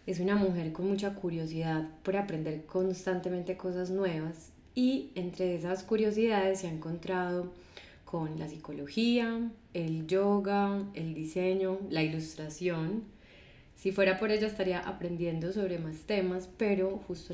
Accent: Colombian